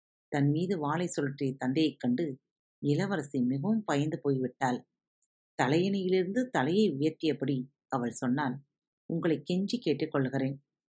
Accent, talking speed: native, 100 wpm